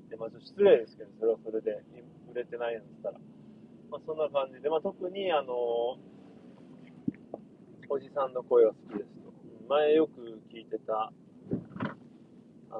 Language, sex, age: Japanese, male, 30-49